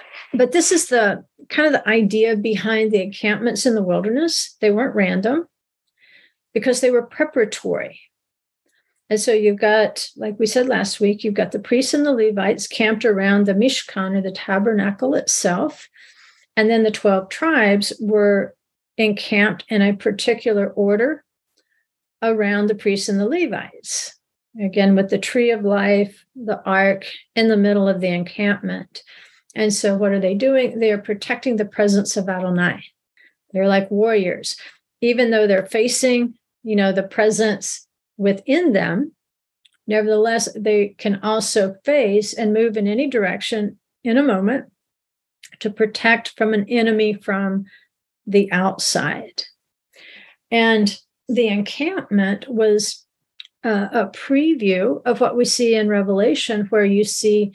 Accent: American